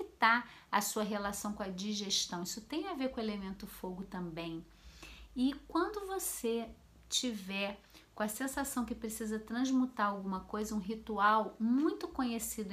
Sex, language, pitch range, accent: female, Portuguese, 200-255 Hz, Brazilian